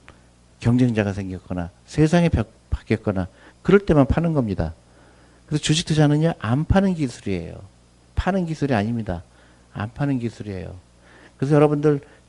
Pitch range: 90-130 Hz